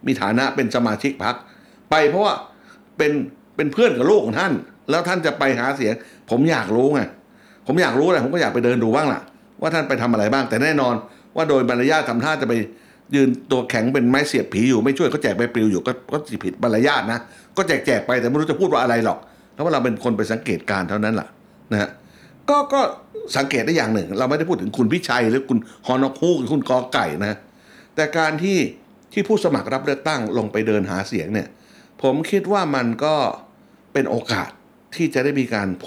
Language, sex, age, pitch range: Thai, male, 60-79, 120-160 Hz